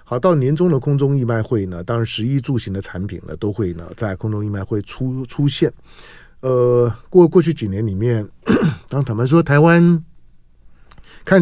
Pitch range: 95-130 Hz